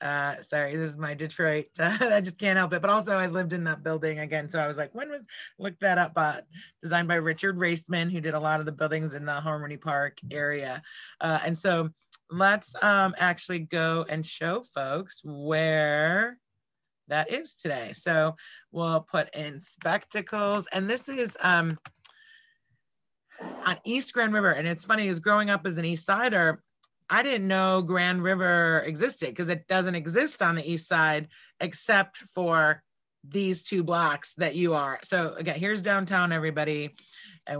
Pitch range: 160-195 Hz